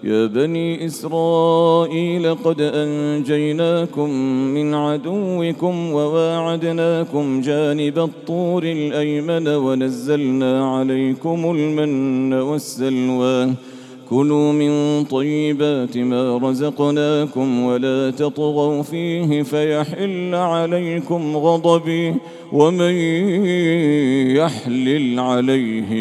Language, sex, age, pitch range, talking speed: English, male, 40-59, 130-165 Hz, 65 wpm